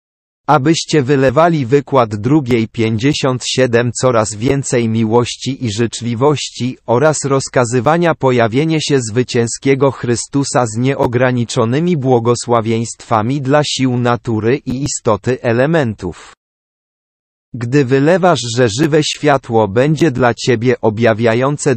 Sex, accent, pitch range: male, Polish, 115-145 Hz